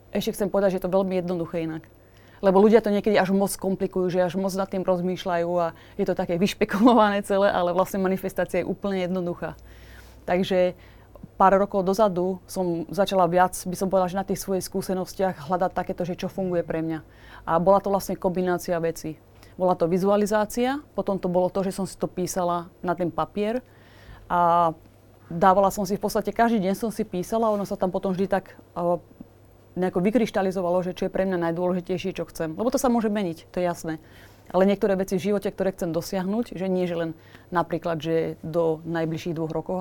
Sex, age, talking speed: female, 30-49, 195 wpm